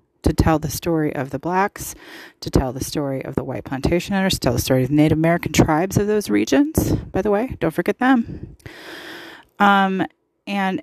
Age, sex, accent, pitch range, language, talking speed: 30-49, female, American, 150-195 Hz, English, 200 wpm